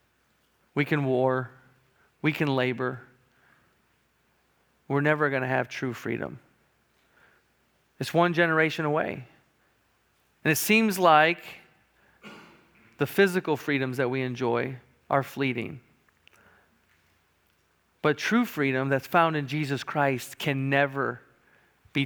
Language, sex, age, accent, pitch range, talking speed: English, male, 40-59, American, 130-155 Hz, 105 wpm